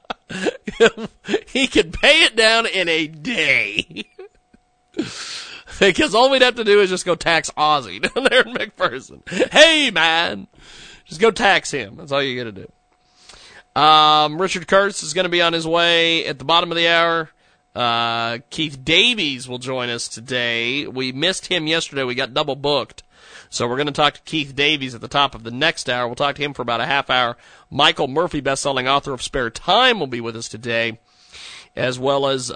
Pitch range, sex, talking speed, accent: 130-195 Hz, male, 190 wpm, American